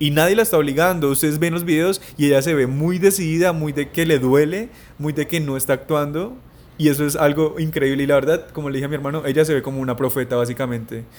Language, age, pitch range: English, 20-39, 130-160 Hz